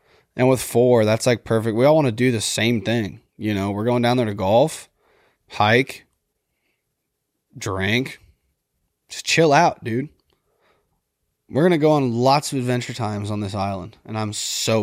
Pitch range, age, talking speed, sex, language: 110-145 Hz, 20-39, 175 wpm, male, English